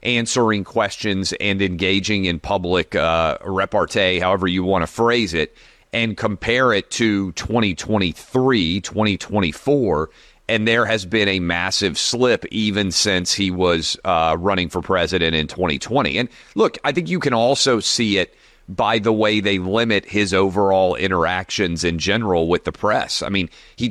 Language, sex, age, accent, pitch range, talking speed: English, male, 30-49, American, 90-110 Hz, 155 wpm